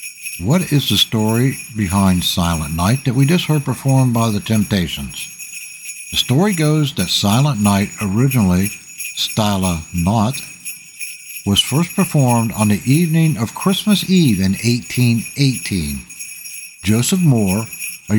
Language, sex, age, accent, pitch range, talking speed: English, male, 60-79, American, 105-150 Hz, 125 wpm